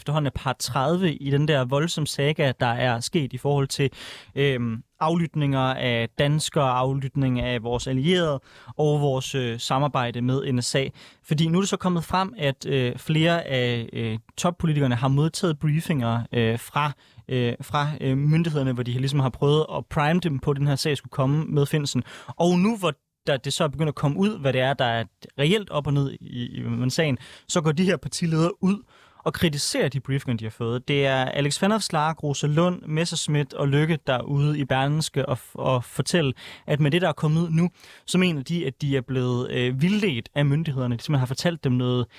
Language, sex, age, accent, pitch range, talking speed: Danish, male, 20-39, native, 130-160 Hz, 210 wpm